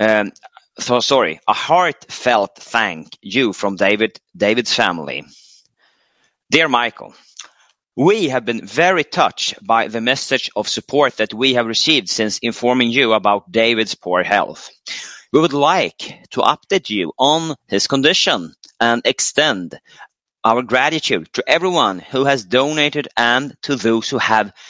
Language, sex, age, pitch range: Chinese, male, 30-49, 110-135 Hz